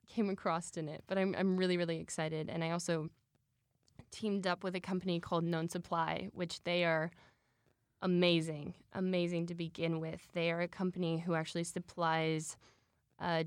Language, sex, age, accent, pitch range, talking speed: English, female, 10-29, American, 165-180 Hz, 165 wpm